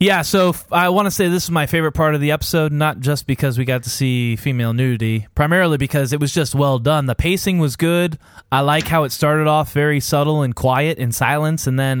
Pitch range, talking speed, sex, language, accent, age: 125-155 Hz, 245 wpm, male, English, American, 20-39